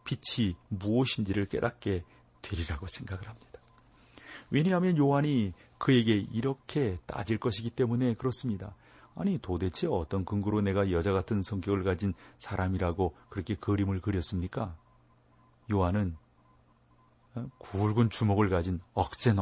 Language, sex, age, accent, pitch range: Korean, male, 40-59, native, 95-120 Hz